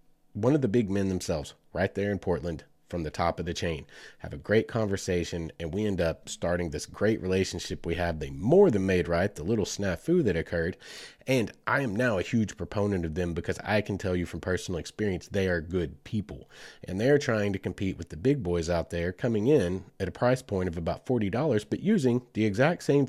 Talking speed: 225 wpm